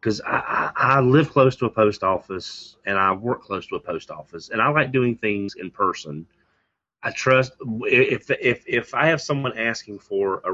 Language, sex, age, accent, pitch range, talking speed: English, male, 30-49, American, 95-120 Hz, 195 wpm